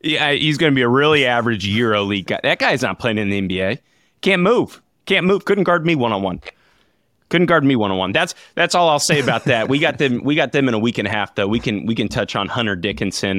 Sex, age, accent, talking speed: male, 30-49, American, 275 wpm